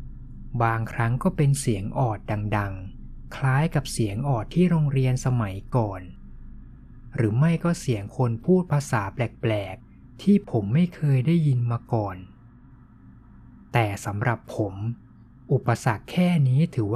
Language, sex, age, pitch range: Thai, male, 20-39, 110-135 Hz